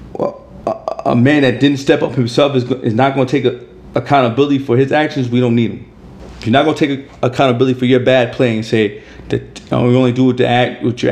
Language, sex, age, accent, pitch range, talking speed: English, male, 40-59, American, 120-150 Hz, 235 wpm